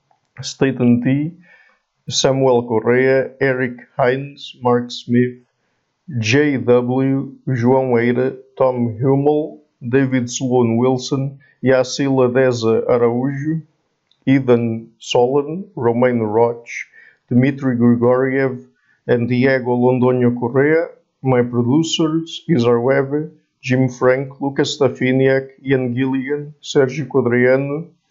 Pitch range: 125-140 Hz